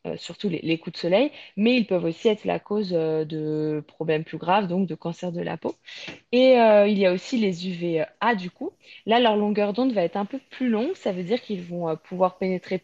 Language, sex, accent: French, female, French